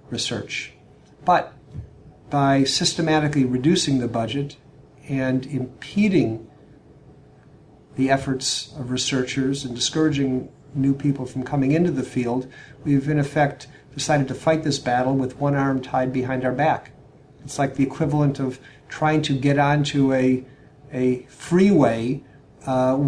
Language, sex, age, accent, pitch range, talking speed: English, male, 50-69, American, 130-145 Hz, 130 wpm